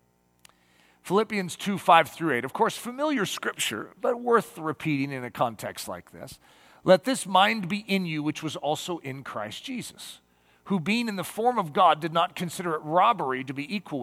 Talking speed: 190 wpm